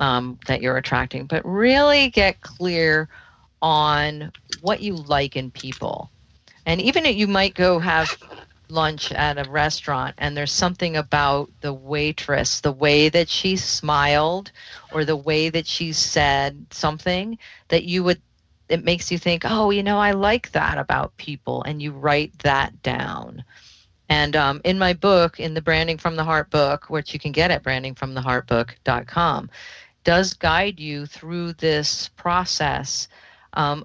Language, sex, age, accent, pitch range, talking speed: English, female, 40-59, American, 140-175 Hz, 155 wpm